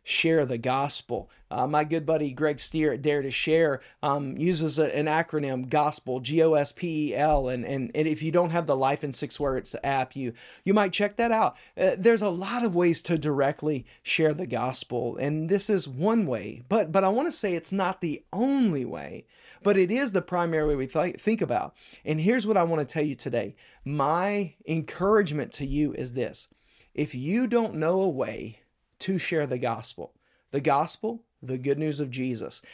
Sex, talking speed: male, 200 wpm